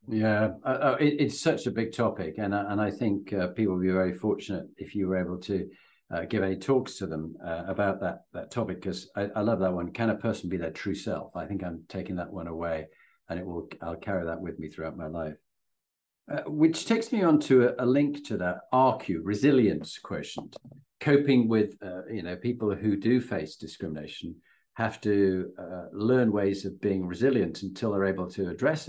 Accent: British